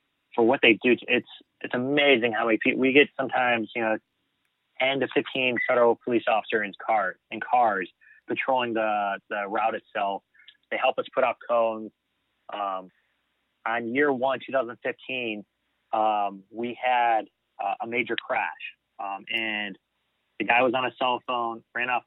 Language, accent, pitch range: English, American, 110-125 Hz